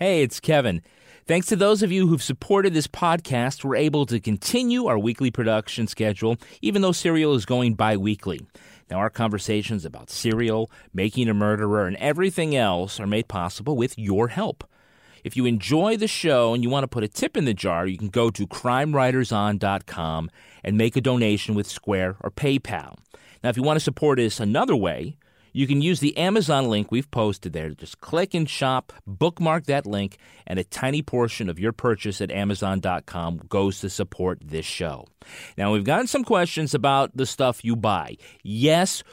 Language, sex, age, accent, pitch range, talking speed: English, male, 30-49, American, 105-145 Hz, 185 wpm